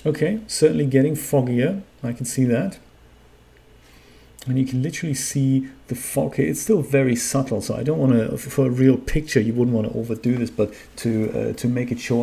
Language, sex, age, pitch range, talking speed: English, male, 40-59, 110-135 Hz, 205 wpm